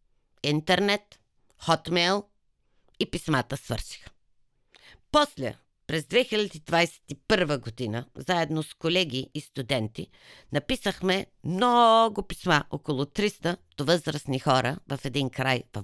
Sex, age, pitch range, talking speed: female, 50-69, 130-180 Hz, 100 wpm